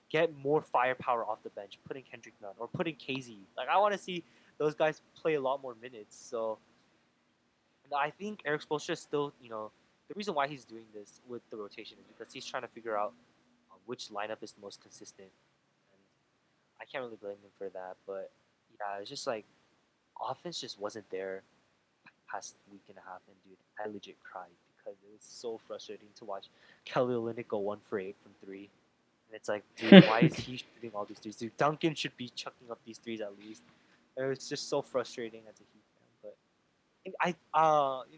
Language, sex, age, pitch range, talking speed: English, male, 20-39, 105-145 Hz, 210 wpm